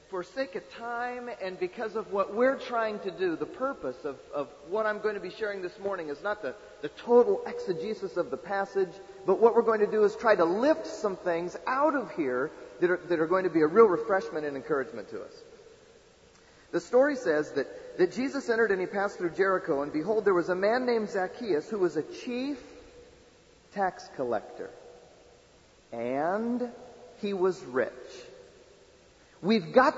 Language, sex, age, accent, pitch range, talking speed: English, male, 40-59, American, 195-275 Hz, 185 wpm